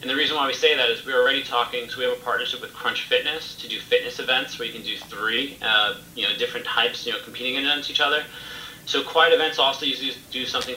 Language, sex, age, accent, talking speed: English, male, 30-49, American, 250 wpm